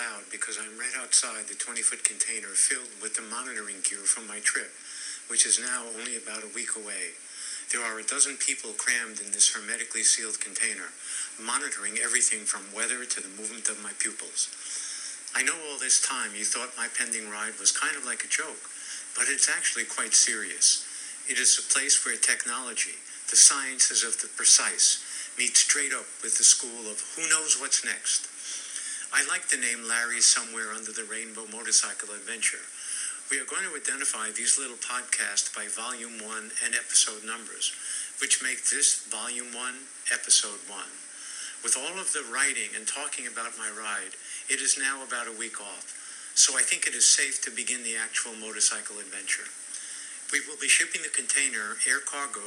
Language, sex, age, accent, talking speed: English, male, 60-79, American, 180 wpm